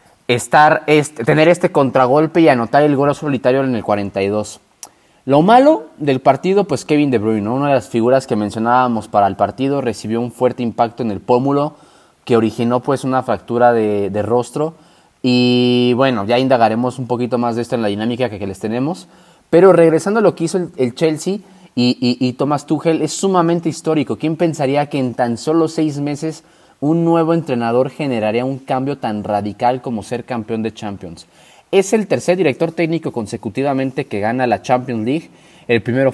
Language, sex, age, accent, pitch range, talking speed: Spanish, male, 30-49, Mexican, 115-150 Hz, 185 wpm